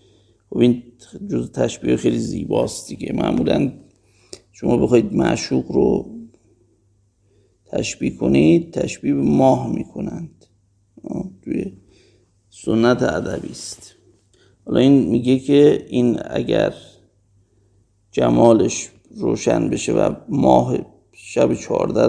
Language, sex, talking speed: Persian, male, 90 wpm